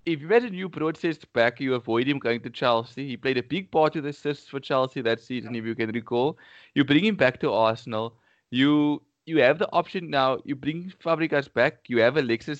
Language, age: English, 20-39